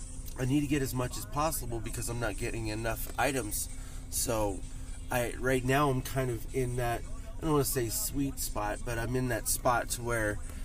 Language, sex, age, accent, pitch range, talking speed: English, male, 20-39, American, 100-130 Hz, 210 wpm